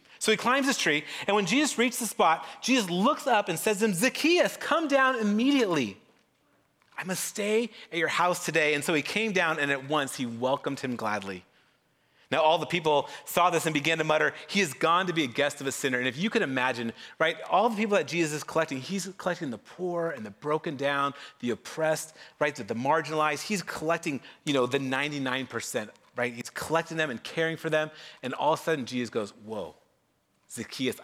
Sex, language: male, English